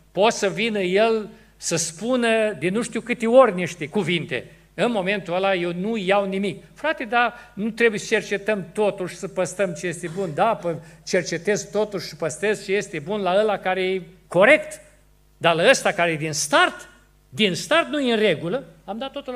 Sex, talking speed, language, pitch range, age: male, 190 wpm, Romanian, 175-240 Hz, 50-69